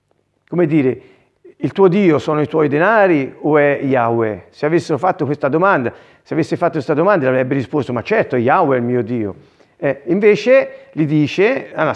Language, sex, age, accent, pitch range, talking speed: Italian, male, 50-69, native, 125-165 Hz, 180 wpm